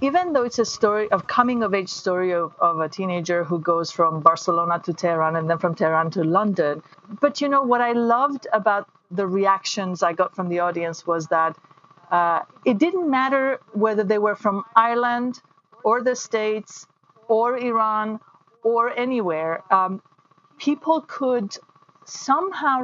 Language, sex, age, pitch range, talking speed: English, female, 40-59, 180-225 Hz, 165 wpm